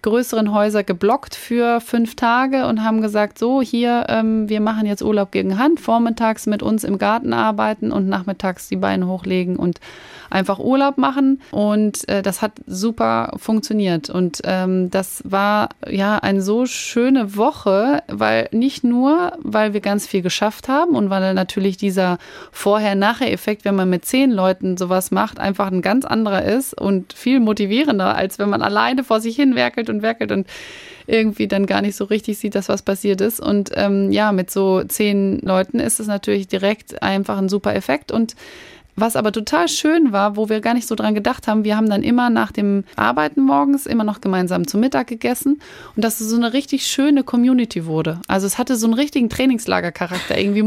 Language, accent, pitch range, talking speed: German, German, 195-240 Hz, 190 wpm